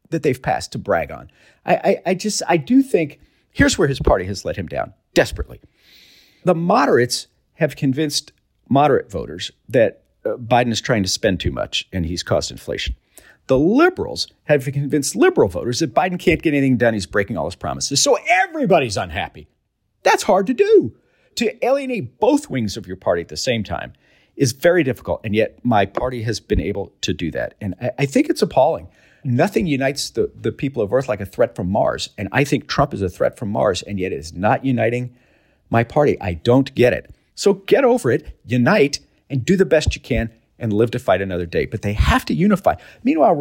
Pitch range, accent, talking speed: 110-160 Hz, American, 205 wpm